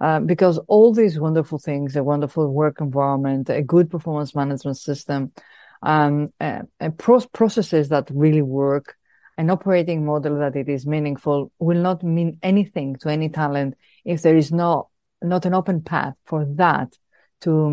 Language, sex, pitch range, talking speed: English, female, 150-185 Hz, 160 wpm